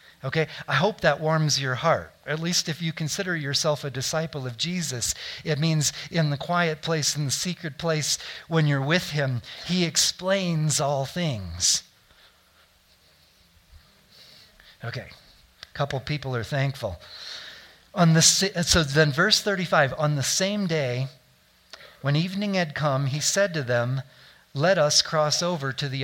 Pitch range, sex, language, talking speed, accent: 130-170 Hz, male, English, 150 wpm, American